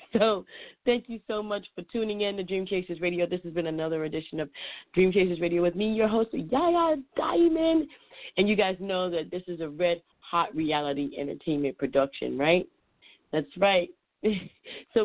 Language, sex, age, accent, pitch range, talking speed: English, female, 30-49, American, 160-220 Hz, 170 wpm